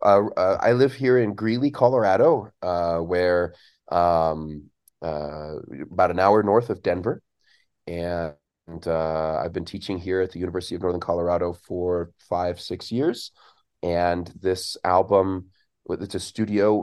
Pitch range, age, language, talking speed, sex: 85-100 Hz, 30-49, English, 140 wpm, male